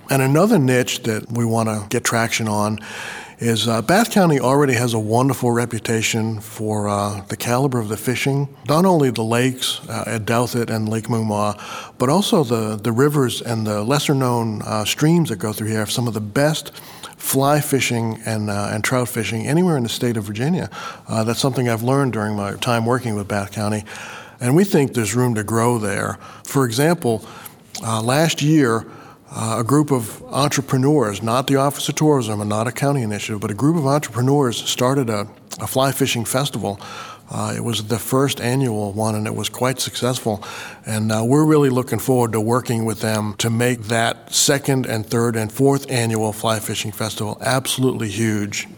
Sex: male